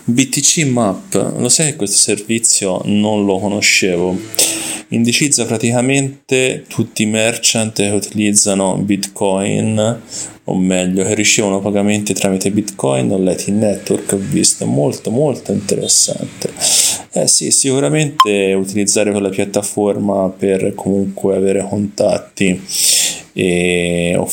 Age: 20-39